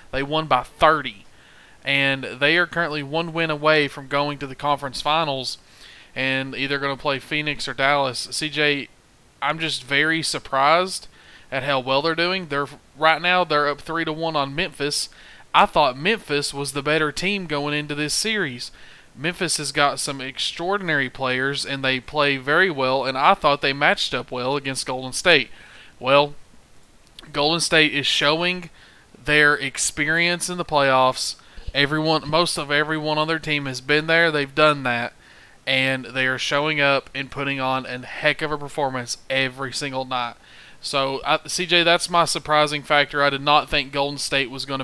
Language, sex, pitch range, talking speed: English, male, 135-155 Hz, 175 wpm